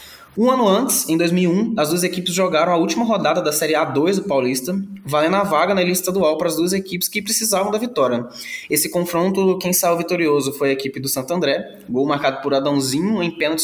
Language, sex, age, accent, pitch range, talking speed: Portuguese, male, 20-39, Brazilian, 145-195 Hz, 210 wpm